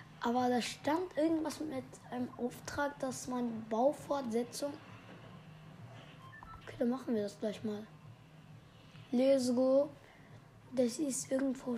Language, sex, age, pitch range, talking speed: German, female, 20-39, 165-260 Hz, 110 wpm